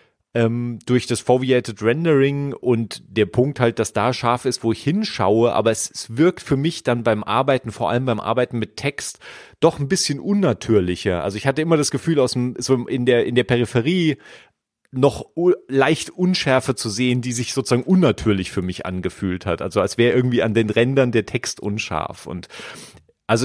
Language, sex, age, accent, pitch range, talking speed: German, male, 30-49, German, 105-130 Hz, 190 wpm